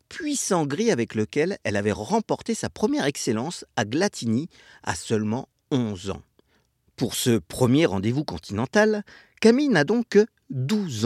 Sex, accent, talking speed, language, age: male, French, 140 wpm, French, 50-69